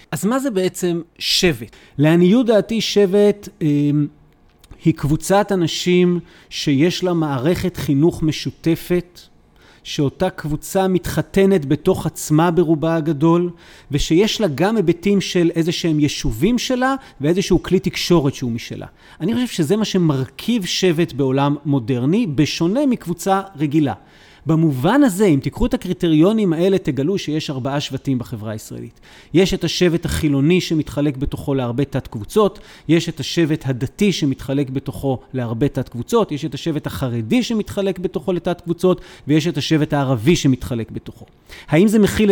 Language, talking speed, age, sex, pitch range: Hebrew, 135 wpm, 40-59, male, 145-185 Hz